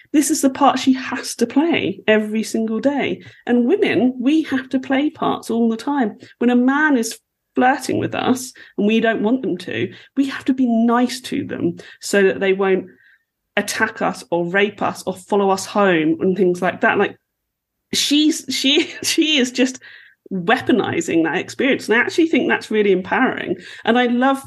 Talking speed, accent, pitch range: 190 wpm, British, 185-265 Hz